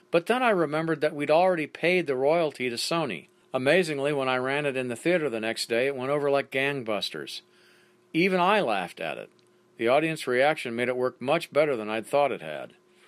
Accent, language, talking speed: American, English, 210 wpm